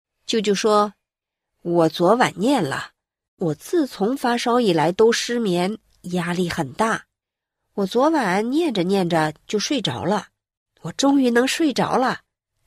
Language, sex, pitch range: Chinese, female, 175-240 Hz